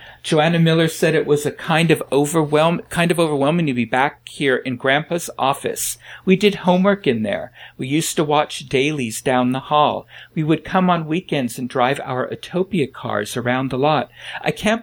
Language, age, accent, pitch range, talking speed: English, 50-69, American, 125-155 Hz, 190 wpm